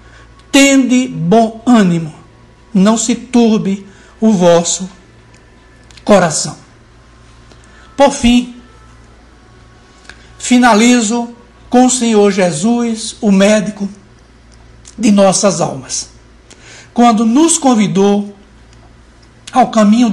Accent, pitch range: Brazilian, 180-240 Hz